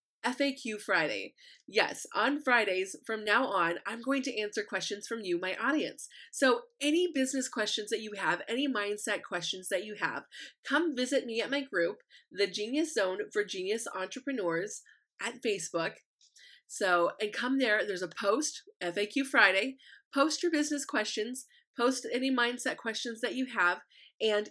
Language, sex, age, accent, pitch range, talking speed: English, female, 20-39, American, 205-270 Hz, 160 wpm